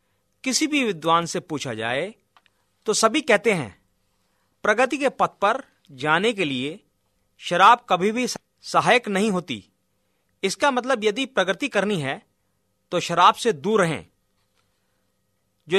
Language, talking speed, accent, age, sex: Hindi, 135 wpm, native, 40-59, male